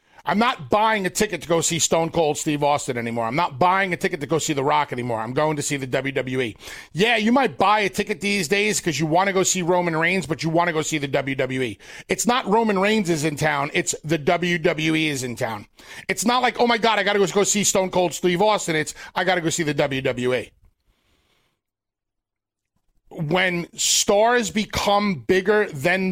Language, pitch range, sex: English, 155-205 Hz, male